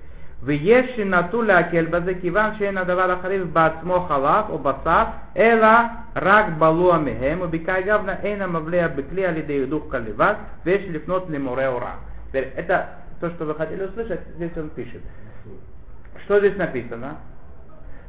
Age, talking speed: 50-69, 60 wpm